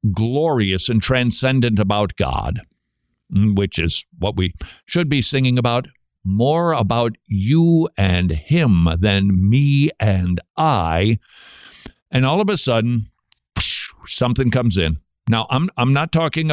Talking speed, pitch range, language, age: 125 wpm, 100-140 Hz, English, 60-79